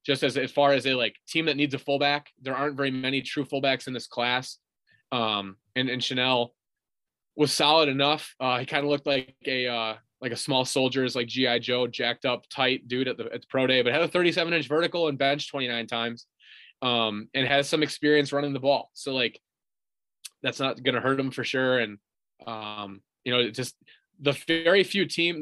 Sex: male